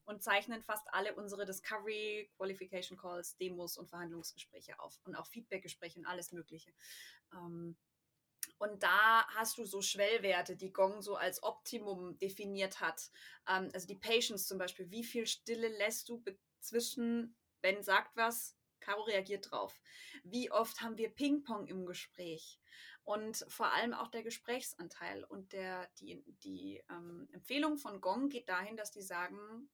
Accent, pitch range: German, 190-230 Hz